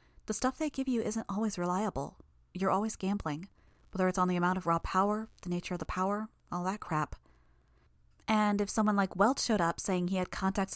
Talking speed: 210 wpm